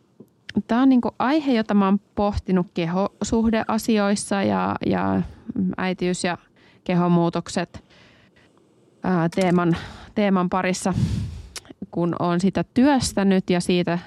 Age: 20-39